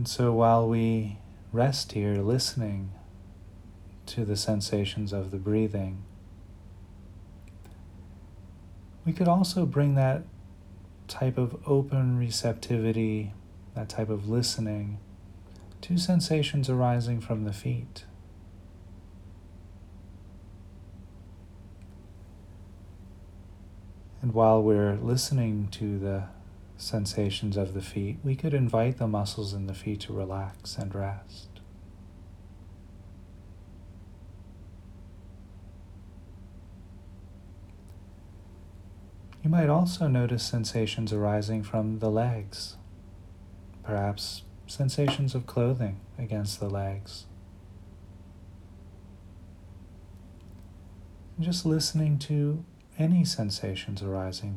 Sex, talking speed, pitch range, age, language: male, 85 wpm, 95-110 Hz, 30-49, English